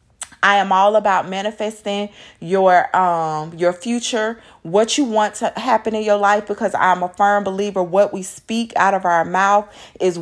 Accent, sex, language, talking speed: American, female, English, 175 wpm